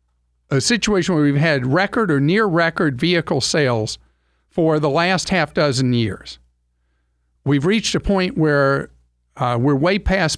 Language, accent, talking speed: English, American, 150 wpm